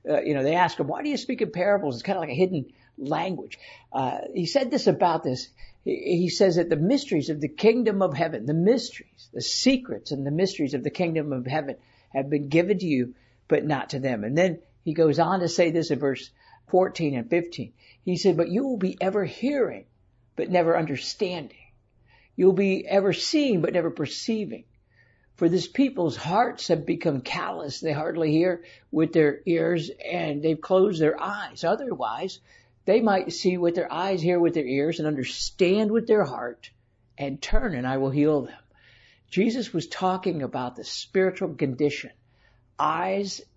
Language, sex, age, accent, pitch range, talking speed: English, male, 60-79, American, 135-185 Hz, 190 wpm